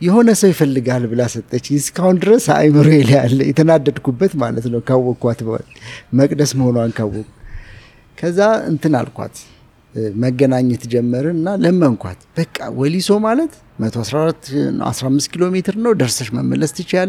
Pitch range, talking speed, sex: 115-175 Hz, 70 wpm, male